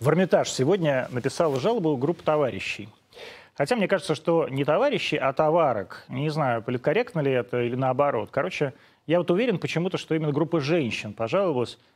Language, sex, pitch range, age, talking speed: Russian, male, 125-180 Hz, 30-49, 155 wpm